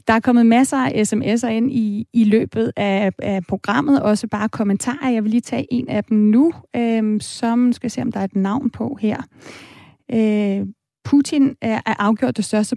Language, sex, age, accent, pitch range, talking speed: Danish, female, 30-49, native, 205-255 Hz, 185 wpm